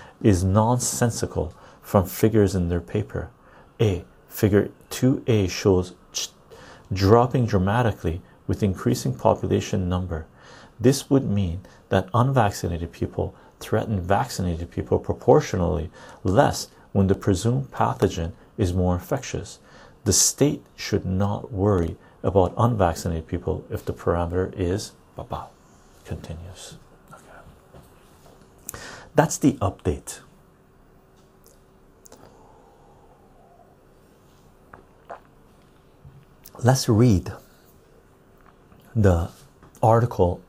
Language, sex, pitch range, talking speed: English, male, 90-110 Hz, 85 wpm